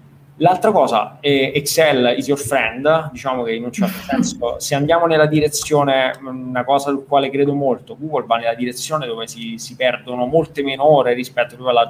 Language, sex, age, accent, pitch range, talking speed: Italian, male, 20-39, native, 125-140 Hz, 180 wpm